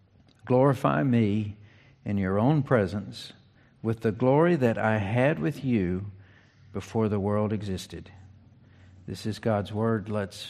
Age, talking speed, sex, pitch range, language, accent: 50-69, 130 wpm, male, 105-125 Hz, English, American